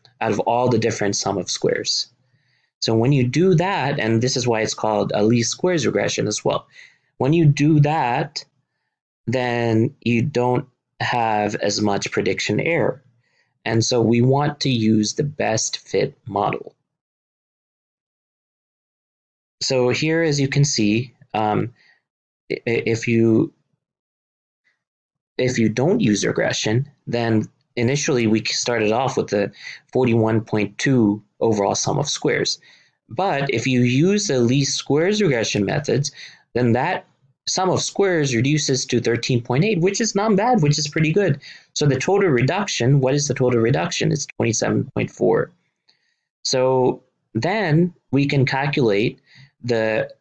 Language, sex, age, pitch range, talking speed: English, male, 30-49, 115-150 Hz, 140 wpm